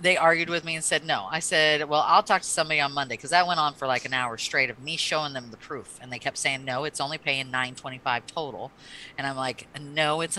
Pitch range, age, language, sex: 140-185 Hz, 40-59, English, female